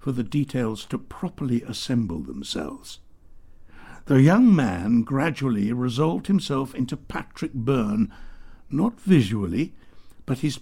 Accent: British